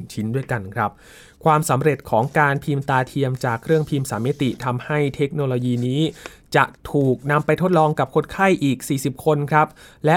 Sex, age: male, 20-39